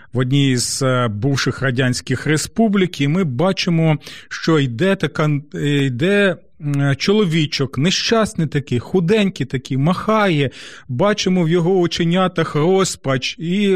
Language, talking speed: Ukrainian, 105 wpm